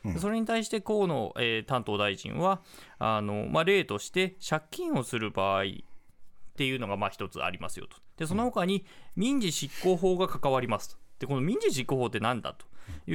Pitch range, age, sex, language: 130-215 Hz, 20-39, male, Japanese